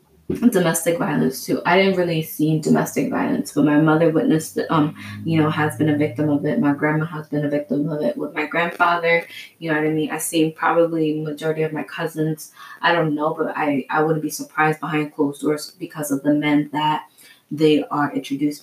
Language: English